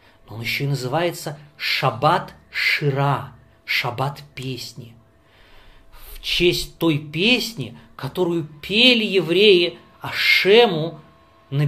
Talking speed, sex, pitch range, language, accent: 85 wpm, male, 125-185 Hz, Russian, native